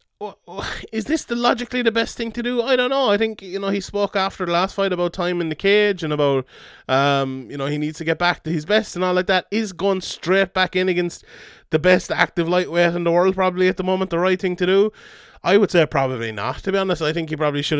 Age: 20-39